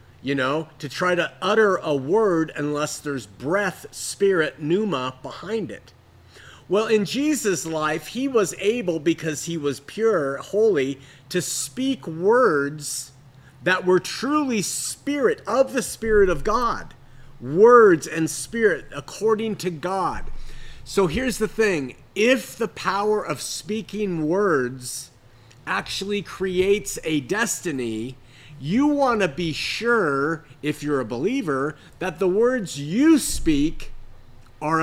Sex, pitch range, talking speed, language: male, 135-205 Hz, 125 wpm, English